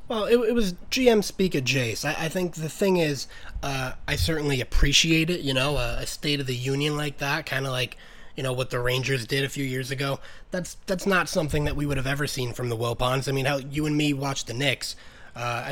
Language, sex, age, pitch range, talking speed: English, male, 20-39, 120-150 Hz, 250 wpm